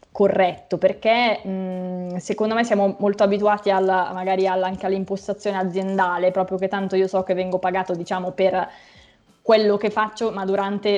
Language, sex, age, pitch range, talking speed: Italian, female, 20-39, 185-200 Hz, 140 wpm